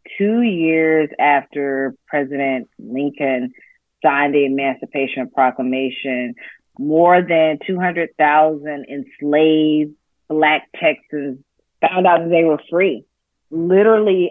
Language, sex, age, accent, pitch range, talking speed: English, female, 30-49, American, 135-170 Hz, 95 wpm